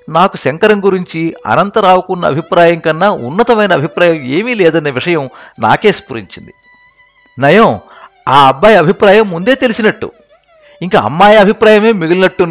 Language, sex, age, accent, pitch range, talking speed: Telugu, male, 60-79, native, 170-235 Hz, 110 wpm